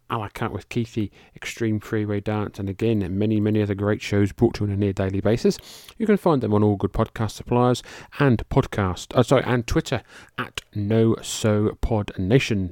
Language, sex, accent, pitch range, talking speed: English, male, British, 100-120 Hz, 210 wpm